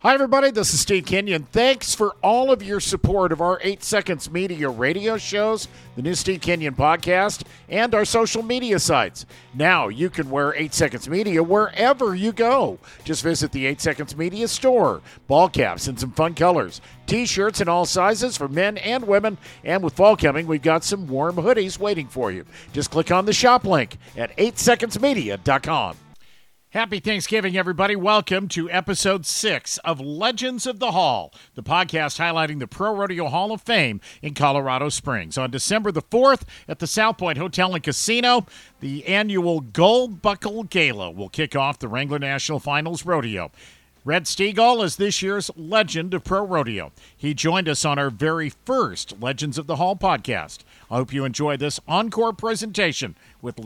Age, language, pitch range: 50-69, English, 150-210 Hz